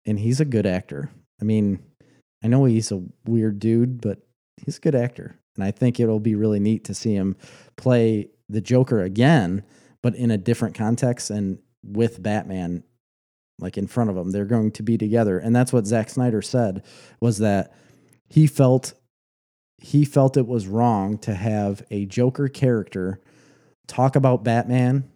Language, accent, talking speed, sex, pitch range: English, American, 175 wpm, male, 105-125 Hz